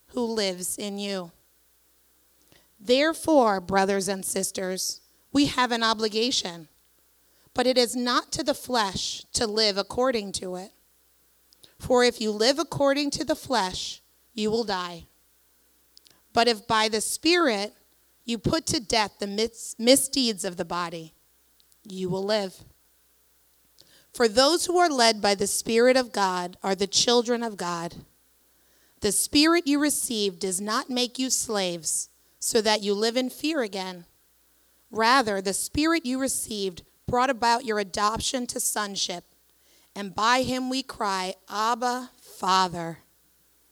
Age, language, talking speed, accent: 30-49, English, 140 wpm, American